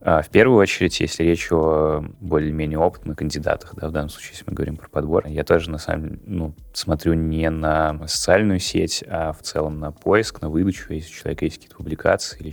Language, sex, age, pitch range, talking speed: Russian, male, 20-39, 75-85 Hz, 205 wpm